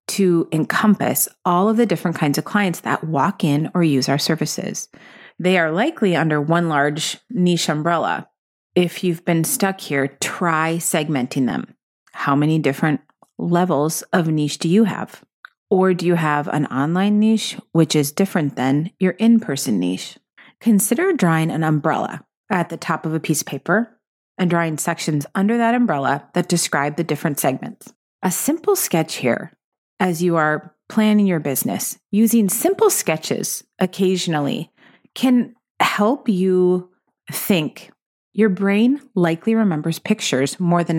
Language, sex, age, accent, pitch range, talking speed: English, female, 30-49, American, 155-205 Hz, 150 wpm